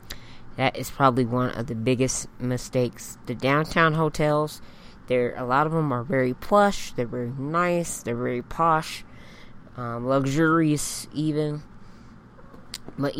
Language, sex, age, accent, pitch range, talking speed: English, female, 20-39, American, 125-155 Hz, 125 wpm